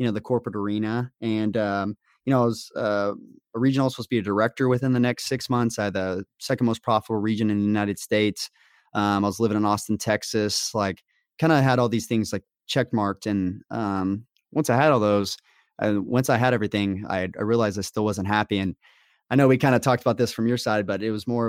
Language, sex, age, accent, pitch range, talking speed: English, male, 20-39, American, 100-120 Hz, 245 wpm